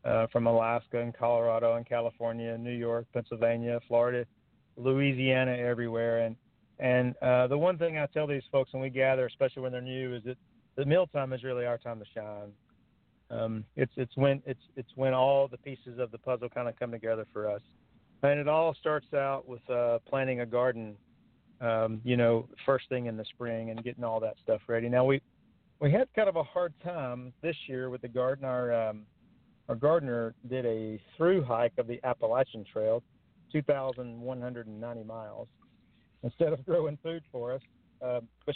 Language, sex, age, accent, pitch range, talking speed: English, male, 50-69, American, 115-140 Hz, 185 wpm